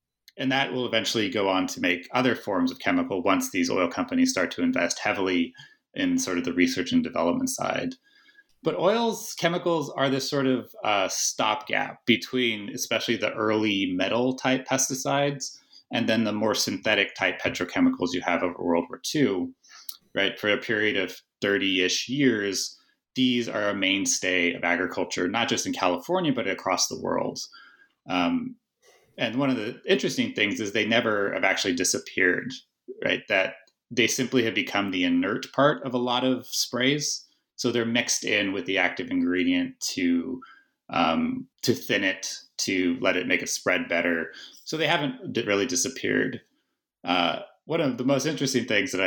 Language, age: English, 30-49